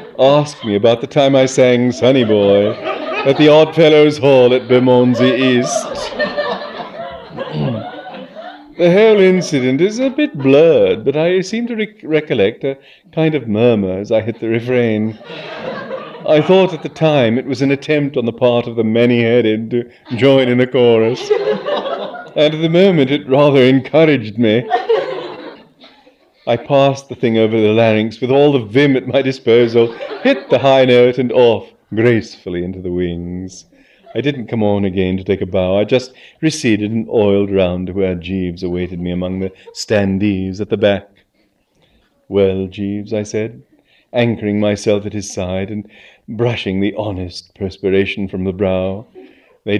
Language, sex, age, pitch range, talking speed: English, male, 40-59, 100-140 Hz, 165 wpm